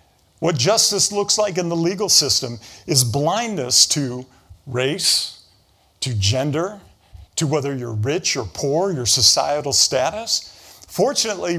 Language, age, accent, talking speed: English, 50-69, American, 125 wpm